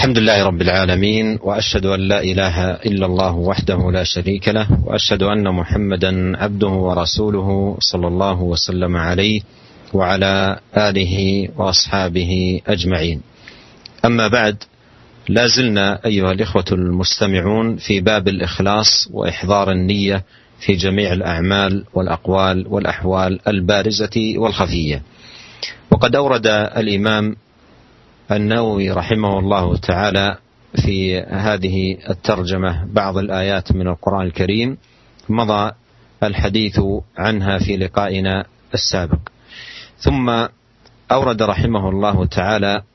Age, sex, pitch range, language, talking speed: 40-59, male, 95-110 Hz, Malay, 100 wpm